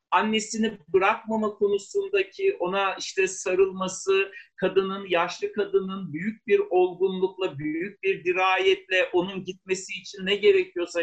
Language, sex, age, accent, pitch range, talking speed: Turkish, male, 50-69, native, 185-245 Hz, 110 wpm